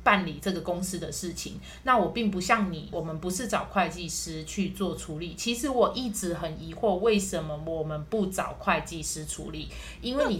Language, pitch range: Chinese, 175-245 Hz